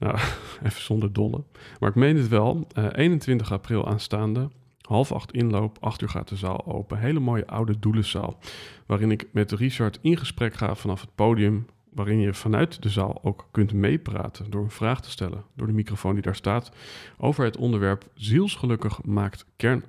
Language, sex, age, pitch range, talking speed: Dutch, male, 40-59, 105-125 Hz, 185 wpm